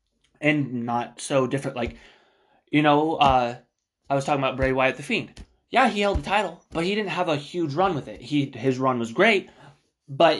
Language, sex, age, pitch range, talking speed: English, male, 20-39, 130-155 Hz, 210 wpm